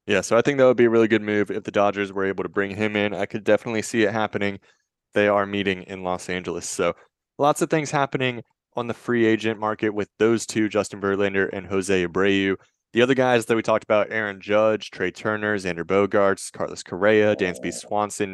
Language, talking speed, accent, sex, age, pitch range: English, 220 wpm, American, male, 20-39, 100-110 Hz